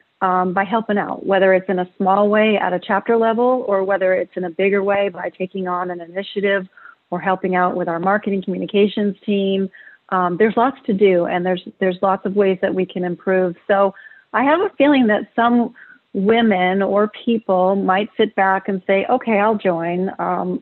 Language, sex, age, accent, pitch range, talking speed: English, female, 40-59, American, 185-210 Hz, 200 wpm